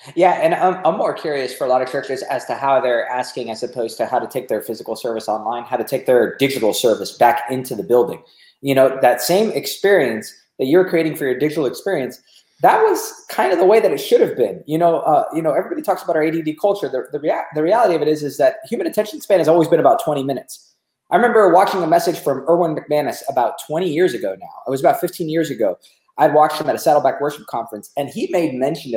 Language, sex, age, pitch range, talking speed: English, male, 20-39, 145-215 Hz, 250 wpm